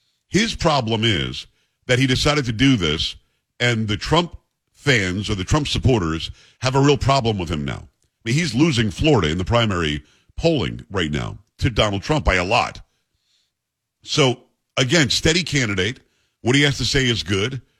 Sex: male